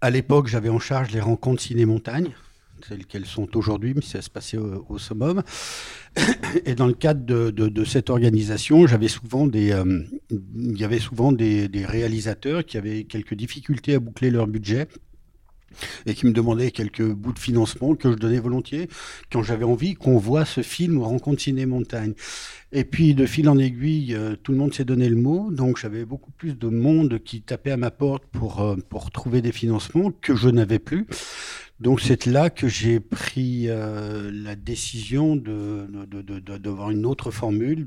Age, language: 60-79, French